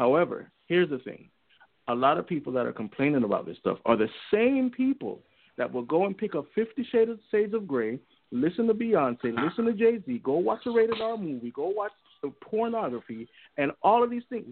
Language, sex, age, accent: English, male, 50-69, American